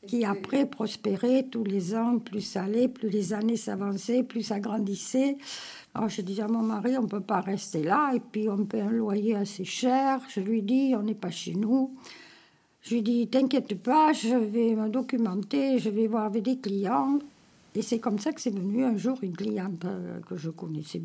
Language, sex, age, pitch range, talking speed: French, female, 60-79, 205-255 Hz, 210 wpm